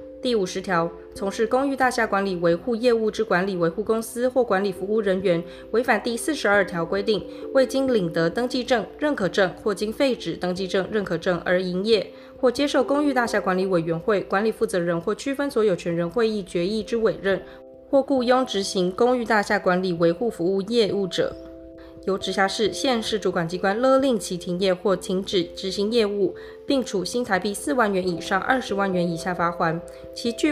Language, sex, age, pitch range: Chinese, female, 20-39, 180-235 Hz